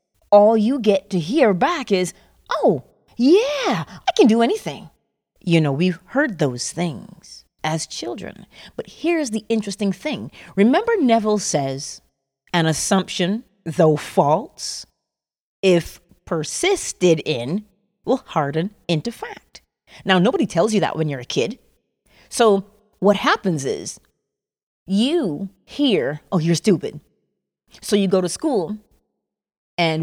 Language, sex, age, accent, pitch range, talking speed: English, female, 30-49, American, 165-230 Hz, 130 wpm